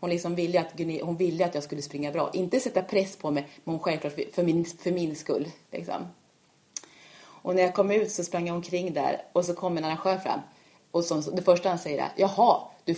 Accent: native